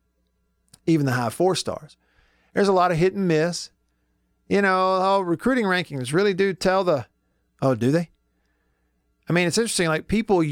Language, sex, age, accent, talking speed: English, male, 50-69, American, 165 wpm